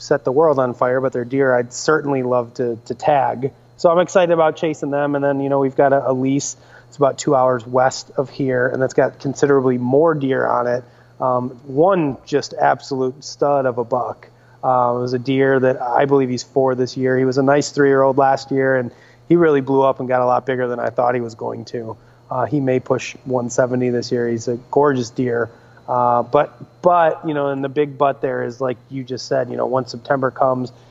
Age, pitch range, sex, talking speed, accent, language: 30-49, 125-140 Hz, male, 230 wpm, American, English